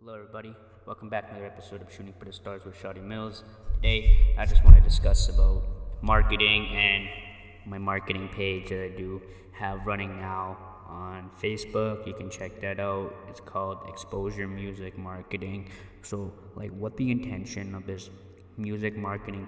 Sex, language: male, English